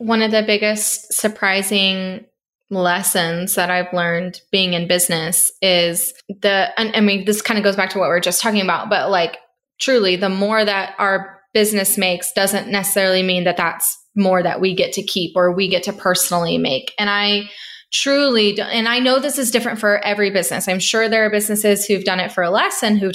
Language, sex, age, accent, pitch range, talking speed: English, female, 20-39, American, 185-220 Hz, 205 wpm